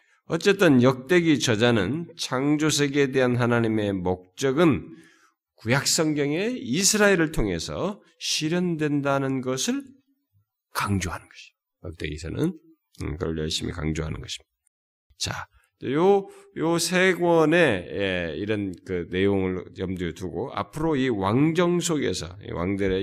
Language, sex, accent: Korean, male, native